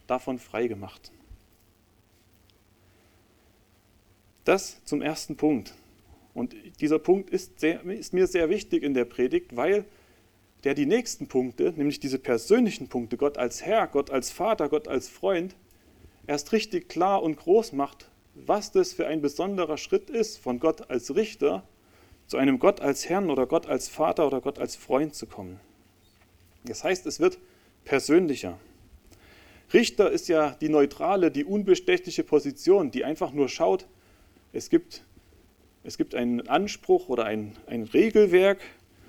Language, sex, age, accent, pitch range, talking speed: German, male, 40-59, German, 105-180 Hz, 145 wpm